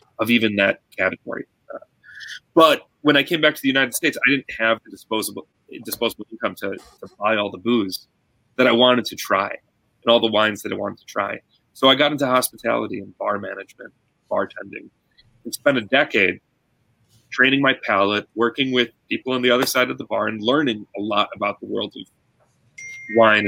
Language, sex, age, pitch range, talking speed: English, male, 30-49, 110-135 Hz, 195 wpm